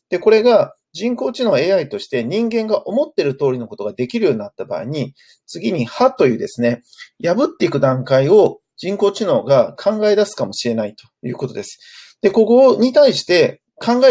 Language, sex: Japanese, male